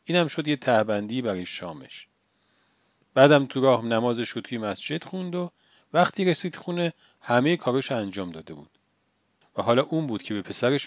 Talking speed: 170 wpm